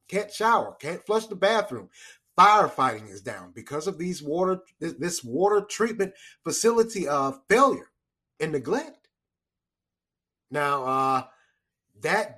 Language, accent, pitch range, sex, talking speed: English, American, 135-200 Hz, male, 115 wpm